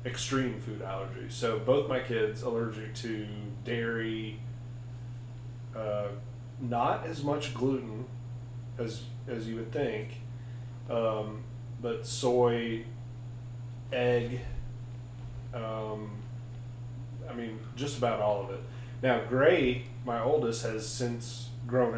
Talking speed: 105 wpm